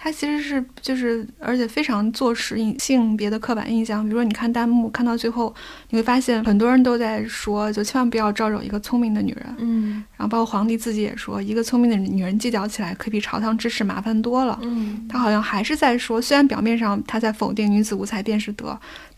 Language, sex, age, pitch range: Chinese, female, 20-39, 210-240 Hz